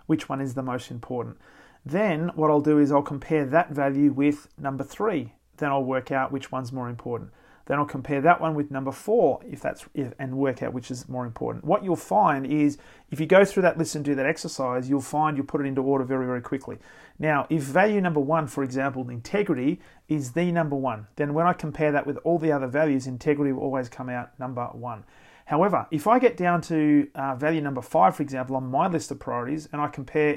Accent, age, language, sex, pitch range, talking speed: Australian, 40-59, English, male, 135-155 Hz, 230 wpm